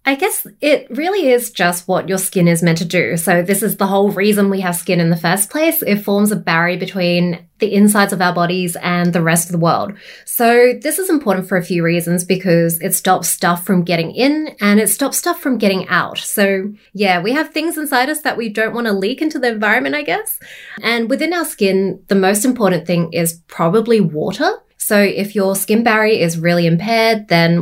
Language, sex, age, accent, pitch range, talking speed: English, female, 20-39, Australian, 175-220 Hz, 220 wpm